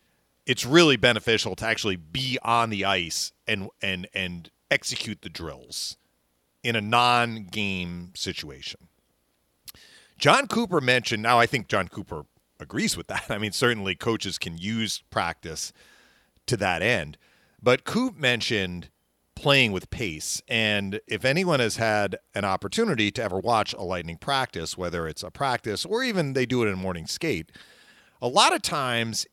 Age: 40-59